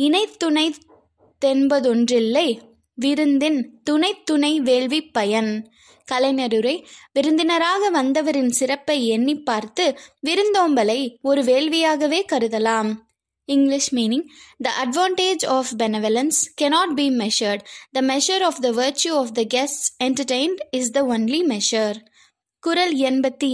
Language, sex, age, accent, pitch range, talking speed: Tamil, female, 20-39, native, 245-305 Hz, 85 wpm